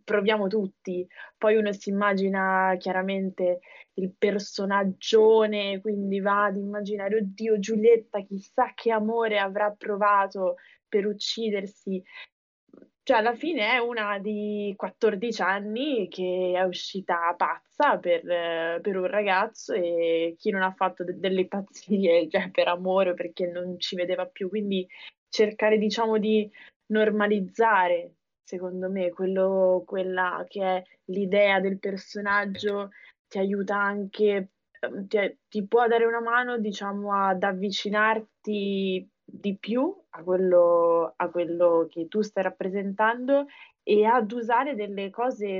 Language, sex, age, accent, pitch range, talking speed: Italian, female, 20-39, native, 185-215 Hz, 125 wpm